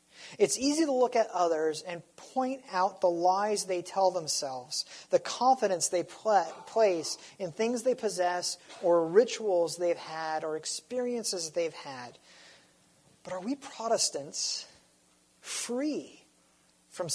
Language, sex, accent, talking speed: English, male, American, 125 wpm